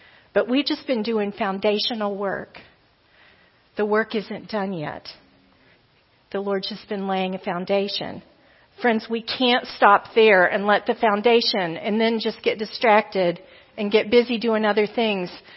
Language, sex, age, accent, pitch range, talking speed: English, female, 40-59, American, 210-250 Hz, 150 wpm